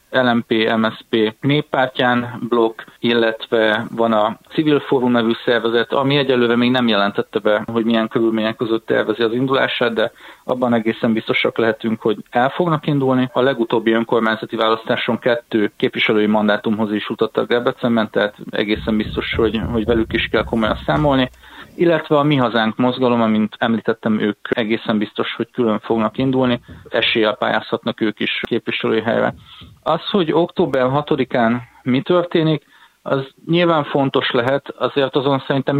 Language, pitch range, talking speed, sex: Hungarian, 110-130 Hz, 145 wpm, male